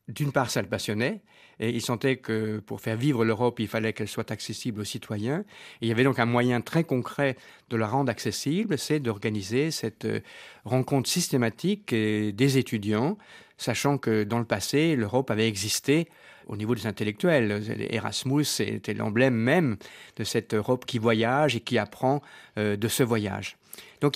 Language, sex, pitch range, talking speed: French, male, 110-135 Hz, 170 wpm